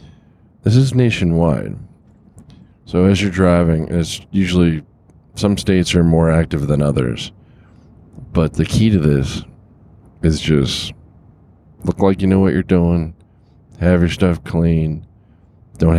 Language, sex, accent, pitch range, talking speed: English, male, American, 75-90 Hz, 130 wpm